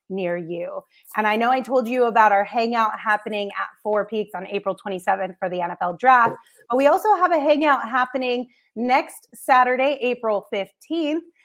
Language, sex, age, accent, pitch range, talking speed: English, female, 30-49, American, 200-260 Hz, 175 wpm